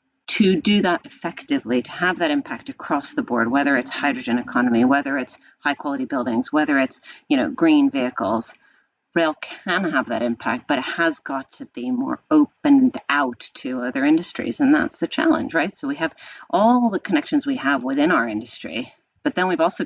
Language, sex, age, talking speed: English, female, 40-59, 190 wpm